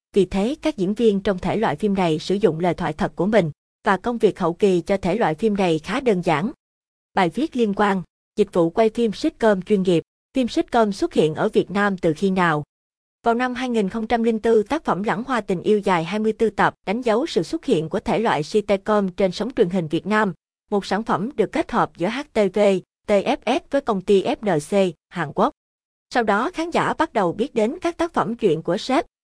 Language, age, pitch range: Vietnamese, 20-39, 185-225 Hz